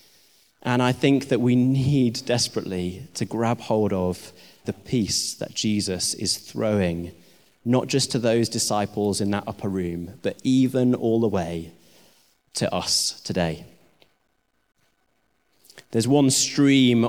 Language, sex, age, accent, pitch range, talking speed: English, male, 30-49, British, 105-125 Hz, 130 wpm